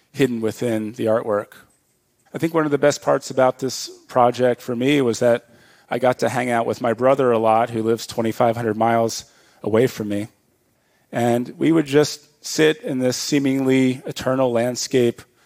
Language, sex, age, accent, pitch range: Japanese, male, 40-59, American, 115-130 Hz